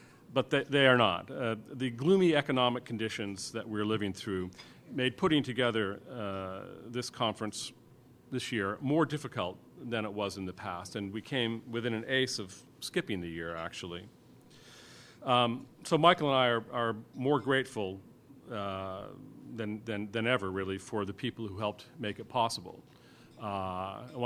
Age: 40-59